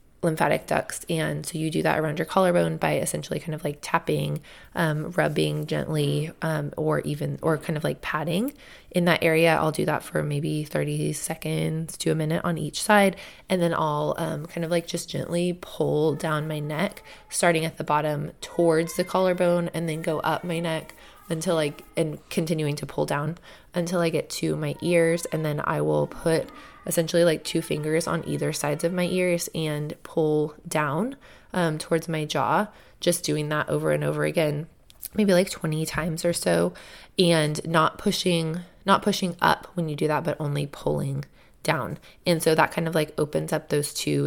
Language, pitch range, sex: English, 150-170 Hz, female